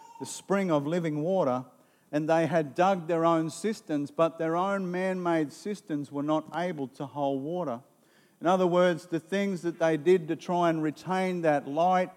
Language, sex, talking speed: English, male, 180 wpm